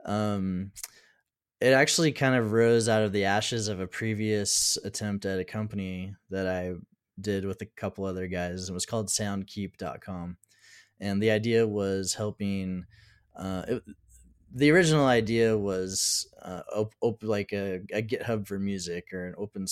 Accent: American